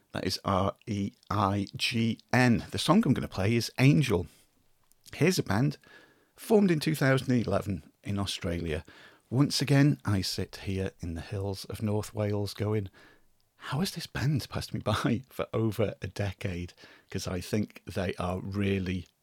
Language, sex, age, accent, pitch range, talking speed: English, male, 40-59, British, 100-140 Hz, 150 wpm